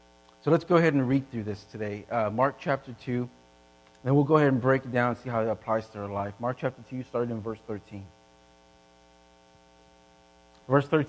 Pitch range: 125-190 Hz